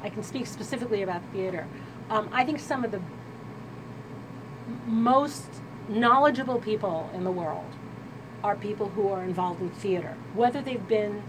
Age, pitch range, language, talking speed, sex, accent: 40-59, 180-230 Hz, English, 150 wpm, female, American